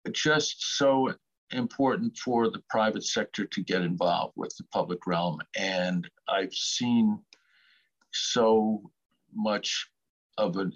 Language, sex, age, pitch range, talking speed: English, male, 50-69, 100-145 Hz, 125 wpm